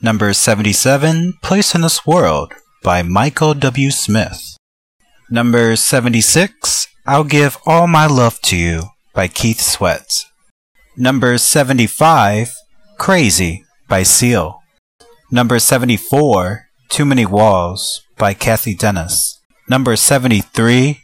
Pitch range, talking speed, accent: 105-140 Hz, 105 wpm, American